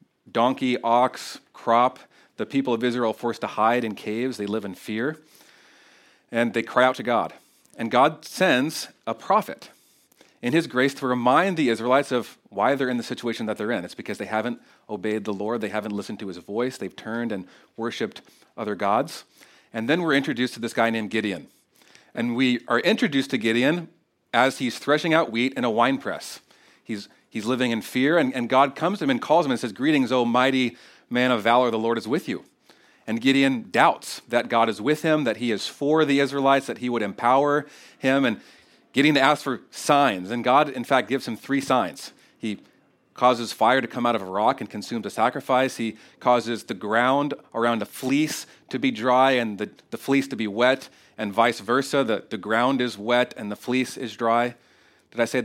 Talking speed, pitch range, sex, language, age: 205 wpm, 115-135 Hz, male, English, 40-59